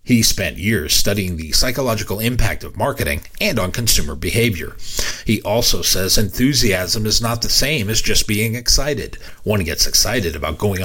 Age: 40-59